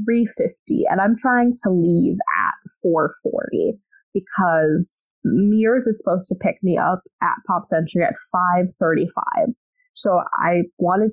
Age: 20-39